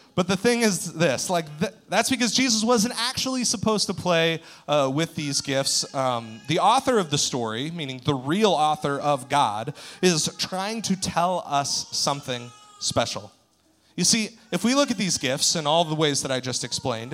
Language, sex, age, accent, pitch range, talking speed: English, male, 30-49, American, 125-170 Hz, 190 wpm